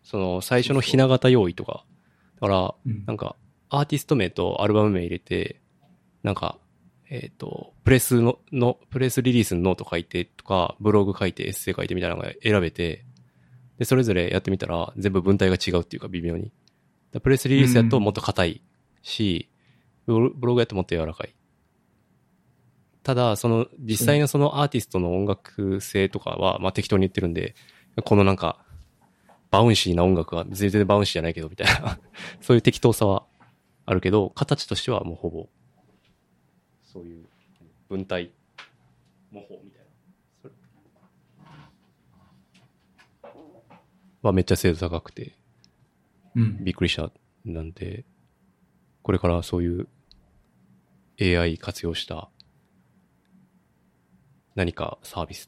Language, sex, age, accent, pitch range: Japanese, male, 20-39, native, 85-120 Hz